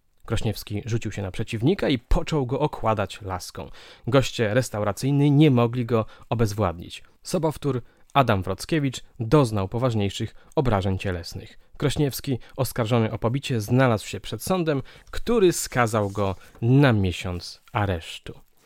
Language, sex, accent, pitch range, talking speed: Polish, male, native, 105-140 Hz, 120 wpm